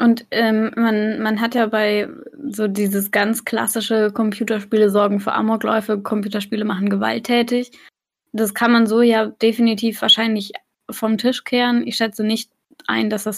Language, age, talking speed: German, 10-29, 150 wpm